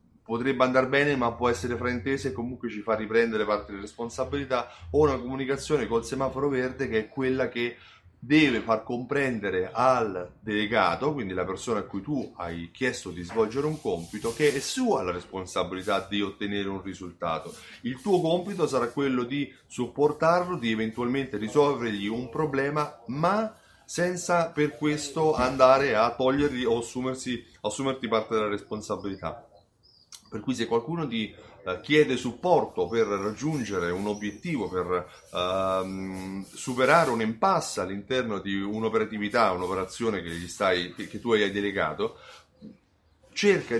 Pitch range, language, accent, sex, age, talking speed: 105-140 Hz, Italian, native, male, 30-49, 140 wpm